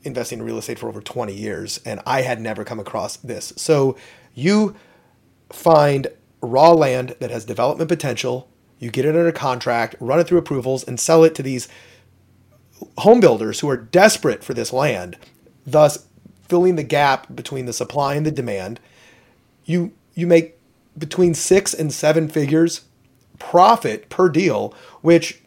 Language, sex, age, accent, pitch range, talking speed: English, male, 30-49, American, 120-160 Hz, 160 wpm